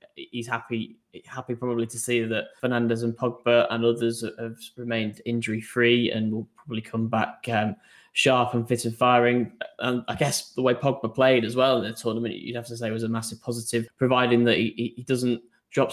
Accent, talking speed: British, 195 wpm